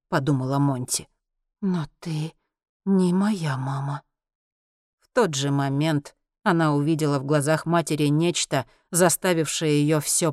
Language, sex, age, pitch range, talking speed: Russian, female, 40-59, 145-180 Hz, 115 wpm